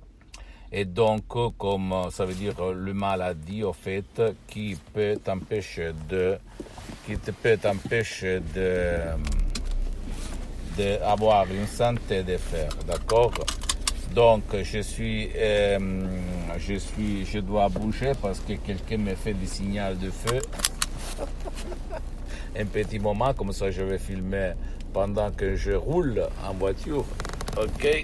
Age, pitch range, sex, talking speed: 60-79, 80-110 Hz, male, 125 wpm